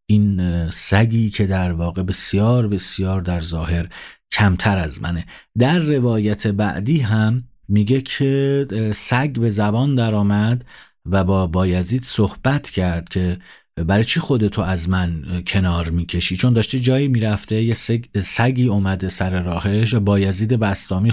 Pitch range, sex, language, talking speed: 95-120 Hz, male, Persian, 135 wpm